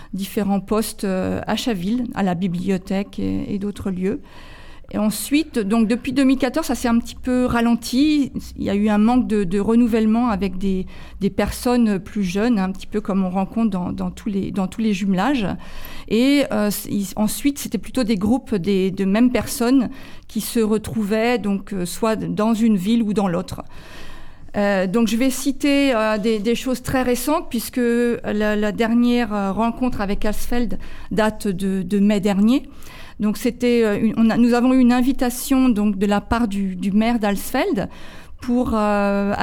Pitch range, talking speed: 205-245 Hz, 175 wpm